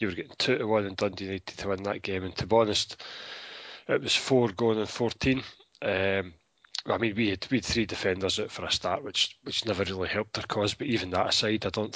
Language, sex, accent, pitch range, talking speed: English, male, British, 95-110 Hz, 245 wpm